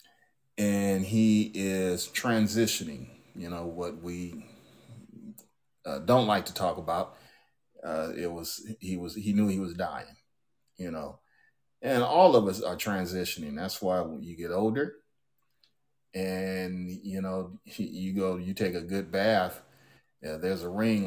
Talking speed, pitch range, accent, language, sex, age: 150 wpm, 90-110 Hz, American, English, male, 30-49